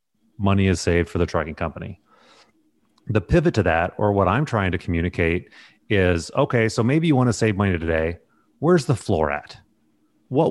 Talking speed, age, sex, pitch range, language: 185 wpm, 30-49, male, 90-115 Hz, English